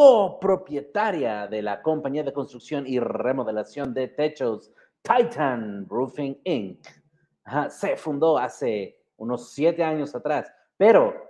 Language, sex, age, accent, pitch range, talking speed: English, male, 30-49, Mexican, 130-185 Hz, 115 wpm